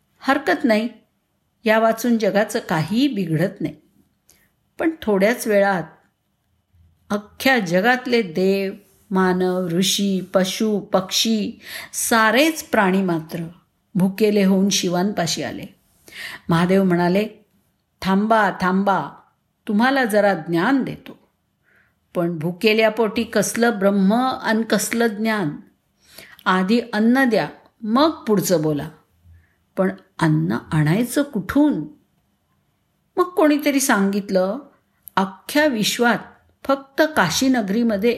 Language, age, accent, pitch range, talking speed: Marathi, 50-69, native, 185-225 Hz, 90 wpm